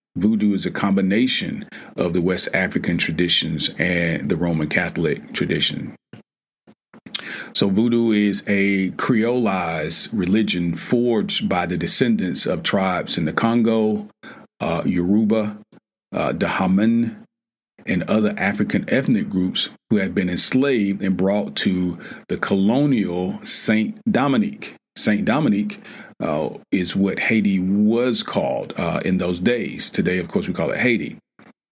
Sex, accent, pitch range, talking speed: male, American, 95-130 Hz, 130 wpm